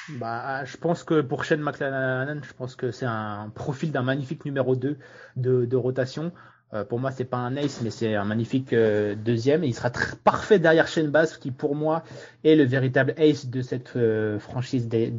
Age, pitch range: 20-39, 120-150 Hz